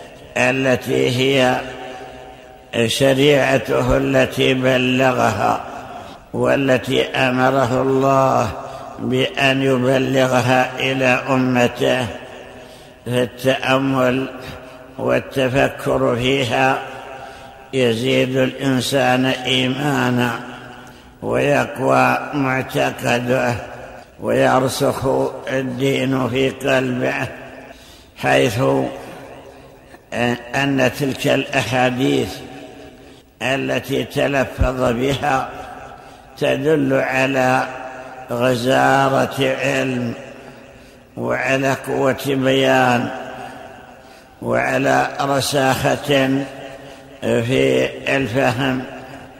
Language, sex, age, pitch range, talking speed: Arabic, male, 60-79, 125-135 Hz, 50 wpm